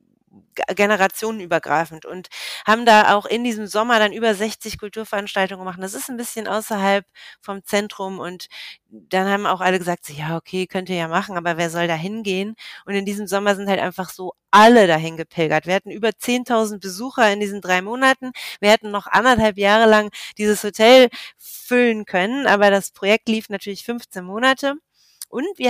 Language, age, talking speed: German, 30-49, 175 wpm